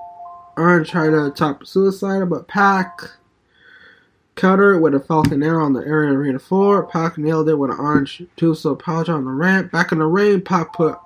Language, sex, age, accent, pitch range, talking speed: English, male, 20-39, American, 155-175 Hz, 200 wpm